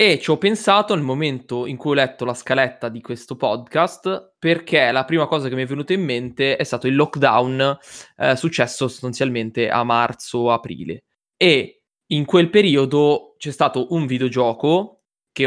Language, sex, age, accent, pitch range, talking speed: Italian, male, 20-39, native, 125-150 Hz, 165 wpm